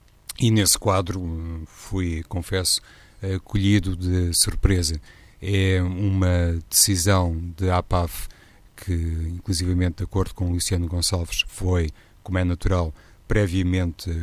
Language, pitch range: Portuguese, 85-95 Hz